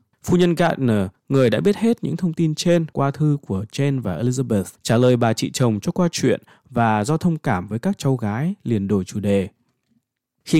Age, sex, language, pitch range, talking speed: 20-39, male, Vietnamese, 115-165 Hz, 215 wpm